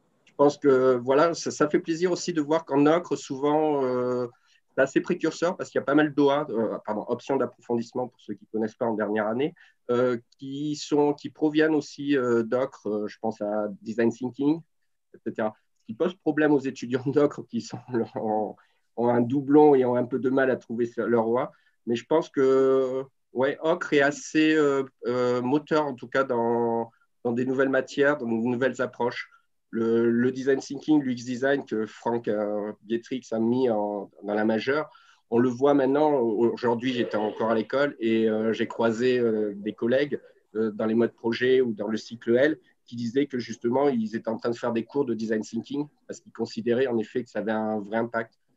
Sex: male